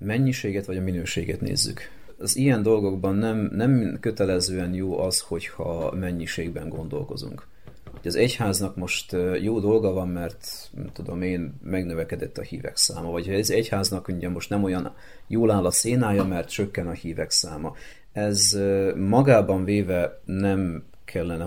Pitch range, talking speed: 85-100 Hz, 140 wpm